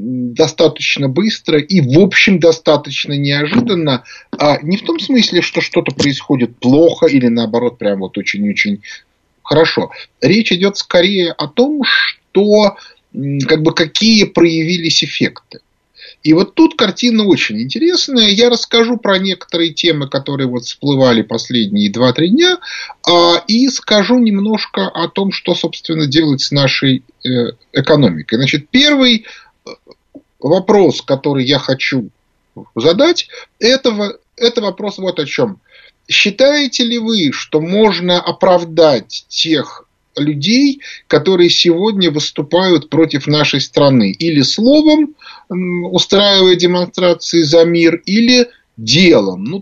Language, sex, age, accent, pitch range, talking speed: Russian, male, 30-49, native, 145-210 Hz, 120 wpm